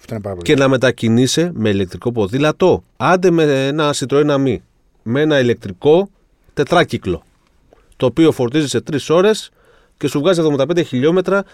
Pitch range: 115-180 Hz